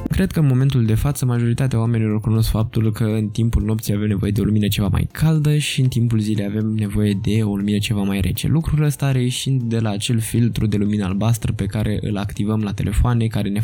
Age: 20-39